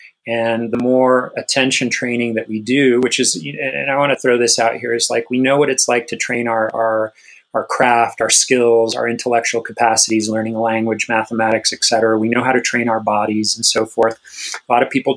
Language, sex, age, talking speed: English, male, 30-49, 220 wpm